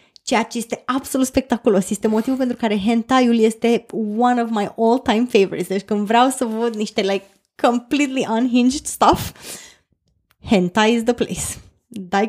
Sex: female